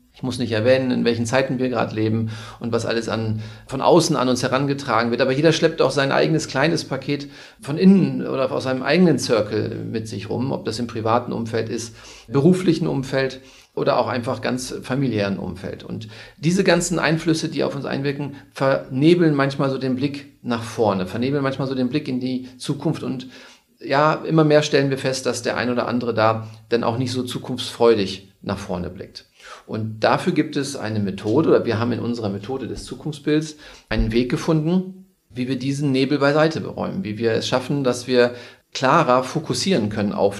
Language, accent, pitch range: German, German, 115-145 Hz